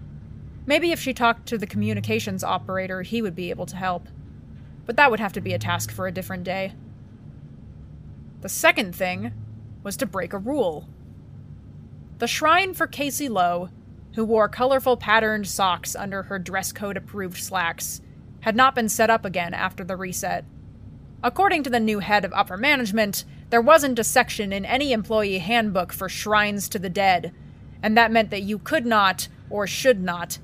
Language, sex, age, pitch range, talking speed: English, female, 20-39, 190-240 Hz, 175 wpm